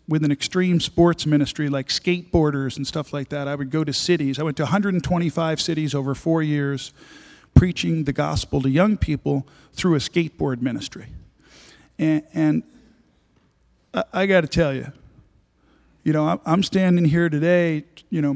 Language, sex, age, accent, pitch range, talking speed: English, male, 50-69, American, 140-165 Hz, 160 wpm